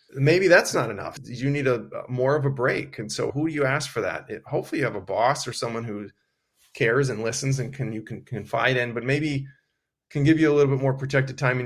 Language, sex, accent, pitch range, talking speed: English, male, American, 120-140 Hz, 250 wpm